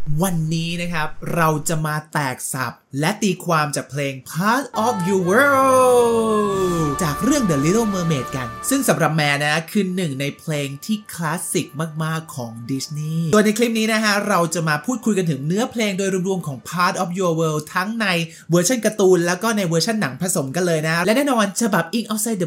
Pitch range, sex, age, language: 160-215 Hz, male, 20-39, Thai